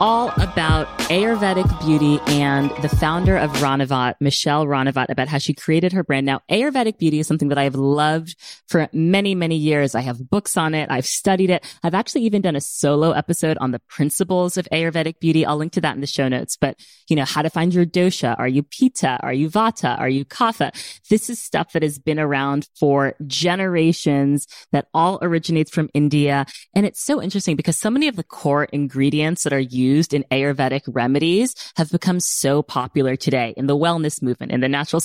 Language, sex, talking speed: English, female, 205 wpm